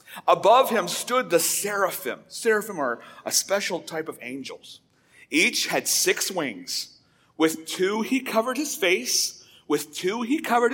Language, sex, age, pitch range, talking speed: English, male, 40-59, 170-275 Hz, 145 wpm